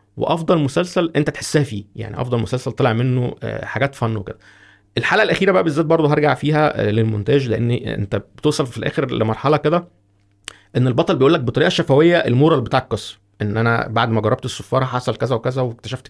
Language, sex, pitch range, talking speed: Arabic, male, 115-155 Hz, 175 wpm